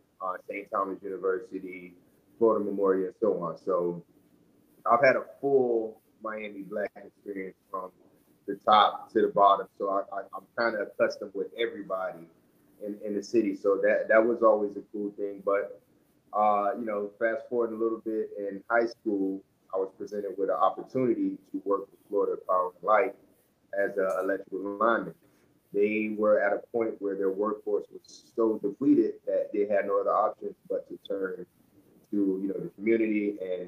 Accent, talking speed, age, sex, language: American, 175 wpm, 30-49, male, English